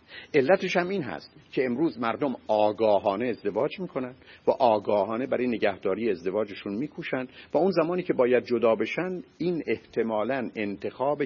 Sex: male